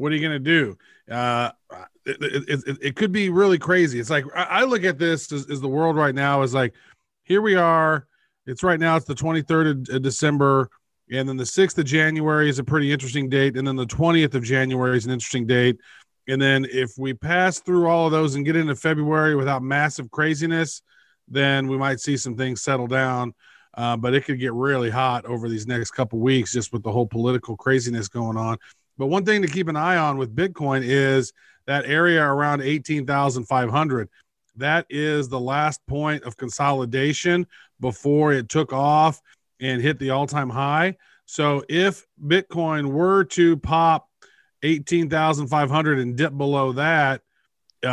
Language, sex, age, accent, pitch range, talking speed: English, male, 40-59, American, 130-160 Hz, 185 wpm